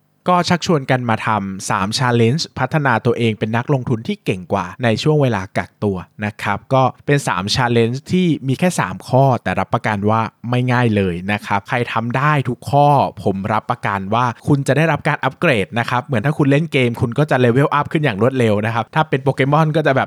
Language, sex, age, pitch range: Thai, male, 20-39, 105-135 Hz